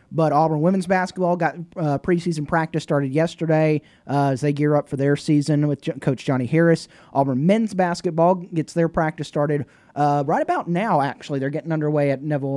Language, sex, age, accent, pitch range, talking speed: English, male, 20-39, American, 140-170 Hz, 185 wpm